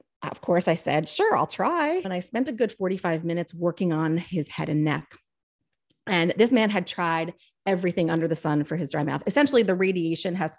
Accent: American